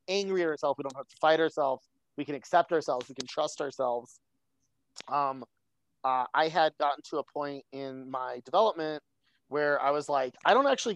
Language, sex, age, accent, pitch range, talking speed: English, male, 30-49, American, 135-165 Hz, 190 wpm